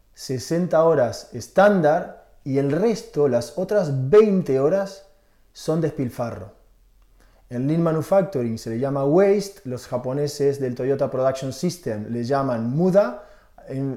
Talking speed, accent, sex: 130 wpm, Argentinian, male